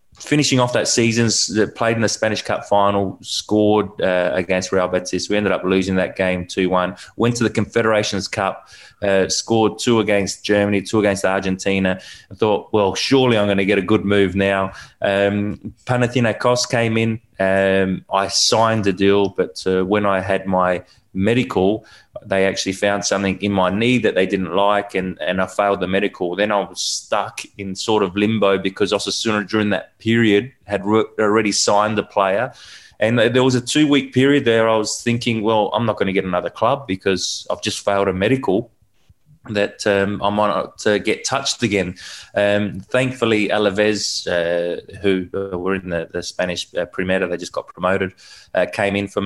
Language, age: English, 20-39